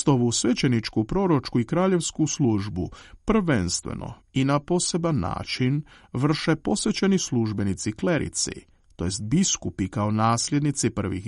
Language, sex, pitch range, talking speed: Croatian, male, 105-160 Hz, 110 wpm